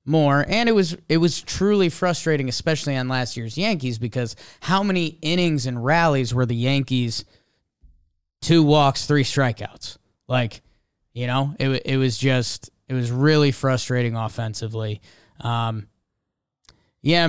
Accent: American